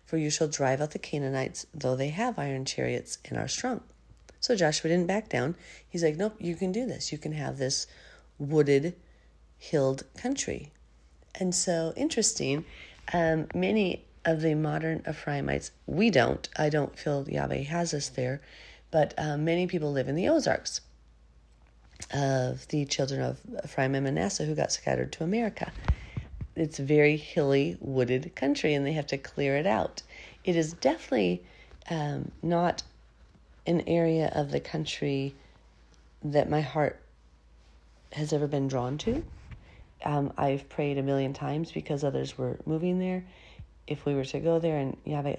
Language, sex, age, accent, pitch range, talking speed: English, female, 40-59, American, 130-165 Hz, 160 wpm